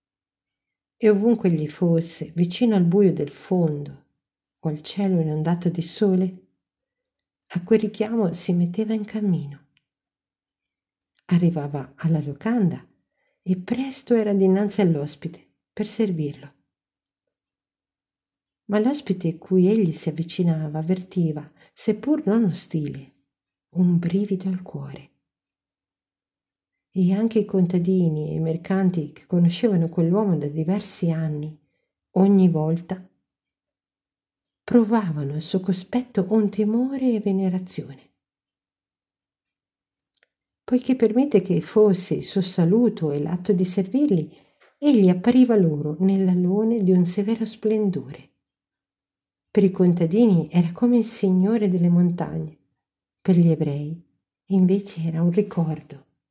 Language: Italian